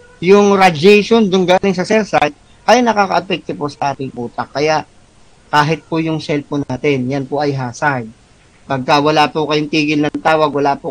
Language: Filipino